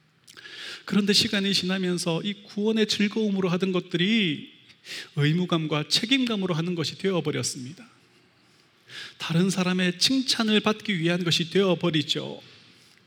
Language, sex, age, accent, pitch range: Korean, male, 30-49, native, 175-225 Hz